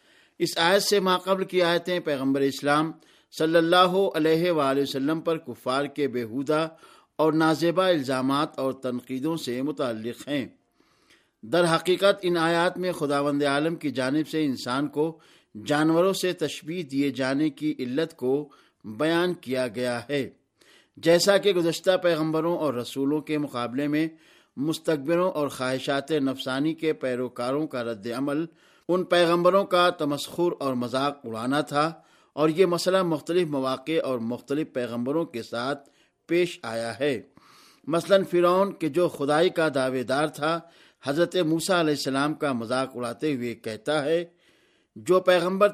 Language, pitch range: Urdu, 135-175 Hz